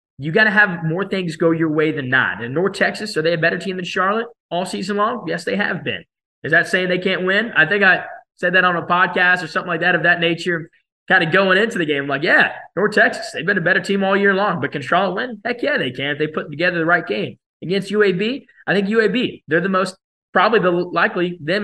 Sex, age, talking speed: male, 20-39, 265 wpm